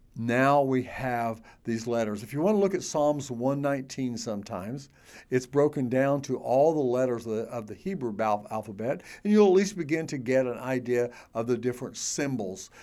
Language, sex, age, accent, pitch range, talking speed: English, male, 60-79, American, 105-130 Hz, 180 wpm